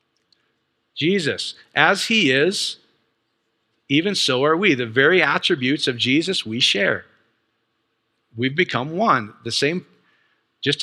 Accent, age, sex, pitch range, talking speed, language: American, 50-69, male, 115-155 Hz, 115 wpm, English